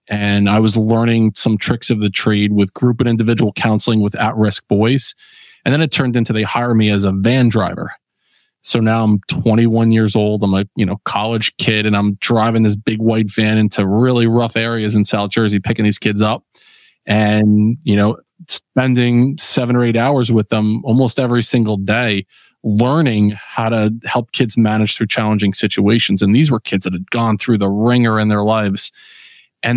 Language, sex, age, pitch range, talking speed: English, male, 20-39, 105-120 Hz, 195 wpm